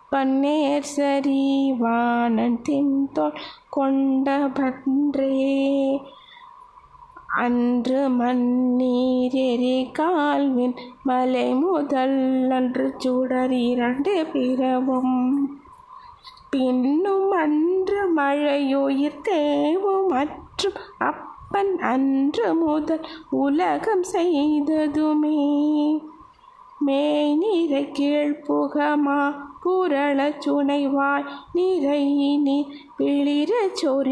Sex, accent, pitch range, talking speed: female, native, 275-320 Hz, 45 wpm